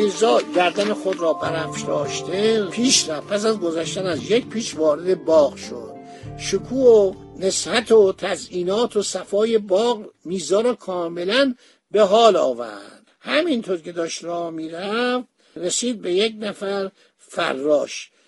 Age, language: 60-79, Persian